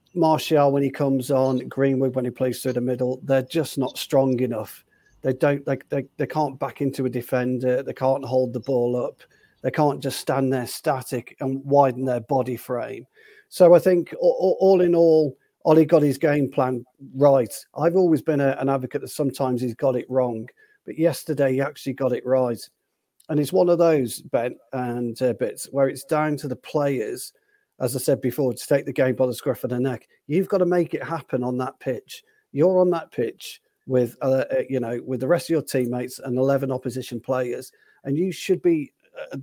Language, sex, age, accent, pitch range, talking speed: English, male, 40-59, British, 125-155 Hz, 210 wpm